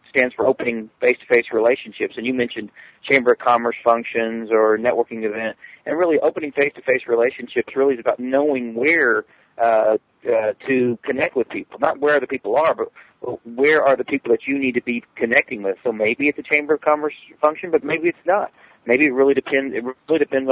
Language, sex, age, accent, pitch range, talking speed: English, male, 40-59, American, 115-140 Hz, 195 wpm